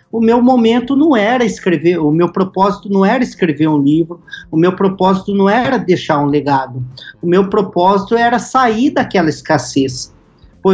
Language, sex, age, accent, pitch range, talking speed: Portuguese, male, 50-69, Brazilian, 165-230 Hz, 170 wpm